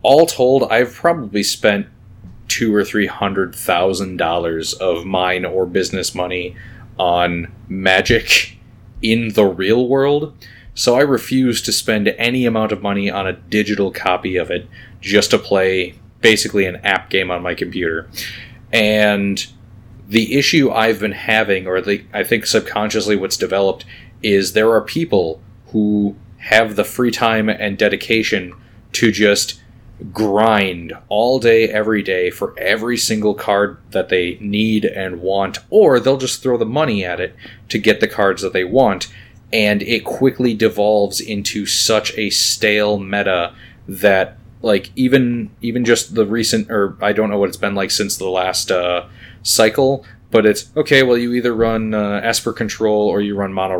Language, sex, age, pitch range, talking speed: English, male, 30-49, 95-115 Hz, 160 wpm